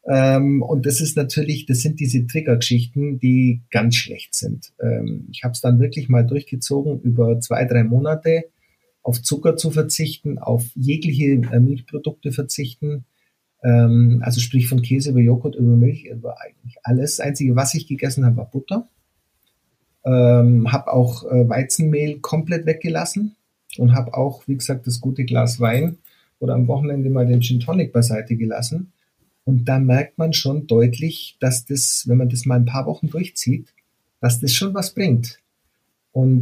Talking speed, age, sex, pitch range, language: 165 wpm, 50-69, male, 120-150 Hz, German